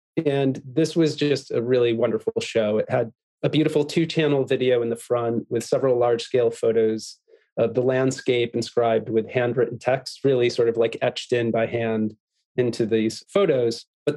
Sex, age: male, 30-49